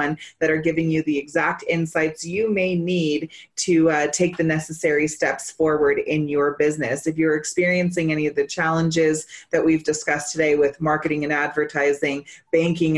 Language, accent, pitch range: English, American, 155-175 Hz